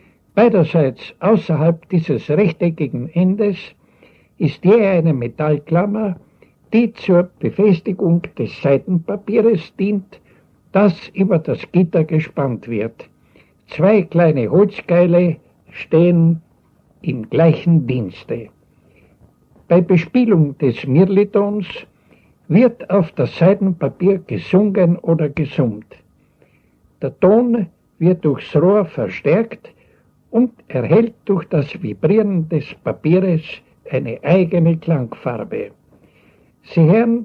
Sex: male